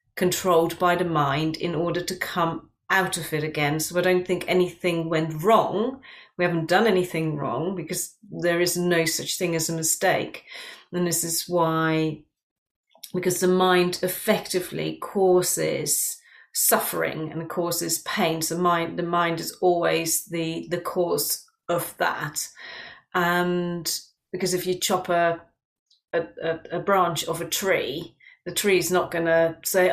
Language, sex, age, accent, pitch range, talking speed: English, female, 30-49, British, 170-220 Hz, 150 wpm